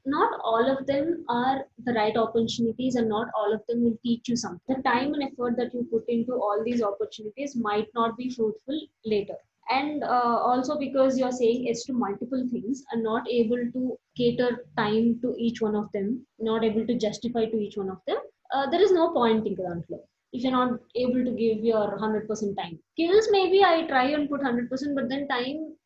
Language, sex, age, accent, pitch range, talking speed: Telugu, female, 20-39, native, 220-275 Hz, 215 wpm